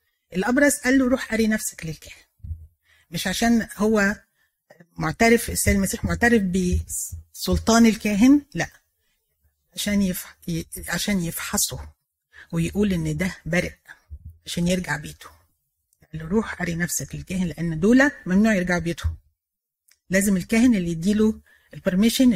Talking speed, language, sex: 115 wpm, Arabic, female